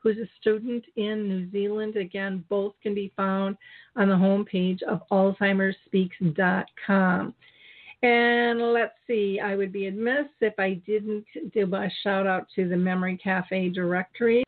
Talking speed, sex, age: 145 wpm, female, 50-69